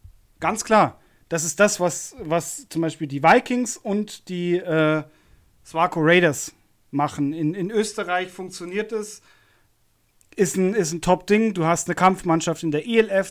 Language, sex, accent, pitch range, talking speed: German, male, German, 150-185 Hz, 160 wpm